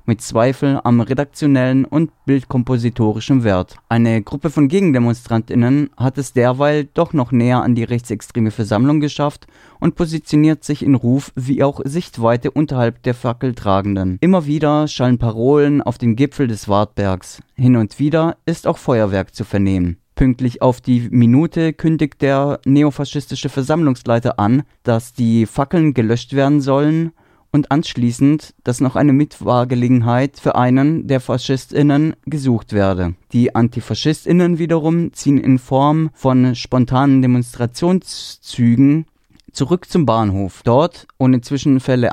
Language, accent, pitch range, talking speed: German, German, 120-145 Hz, 130 wpm